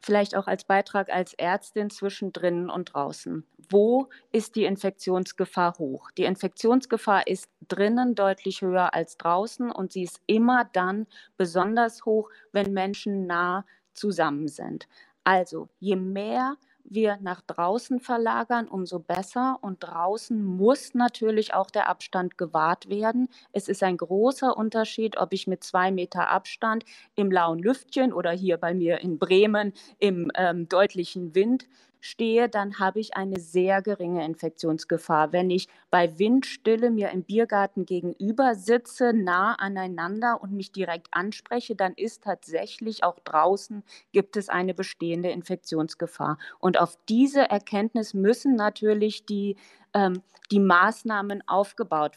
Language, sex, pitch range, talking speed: German, female, 180-225 Hz, 140 wpm